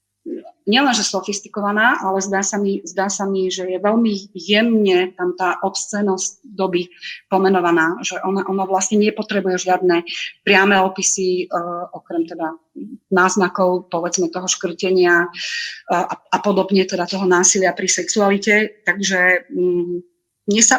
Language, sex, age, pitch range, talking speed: Slovak, female, 30-49, 185-210 Hz, 125 wpm